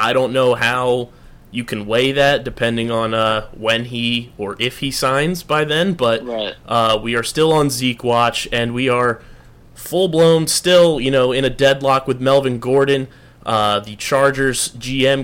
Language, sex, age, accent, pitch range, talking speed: English, male, 20-39, American, 115-140 Hz, 175 wpm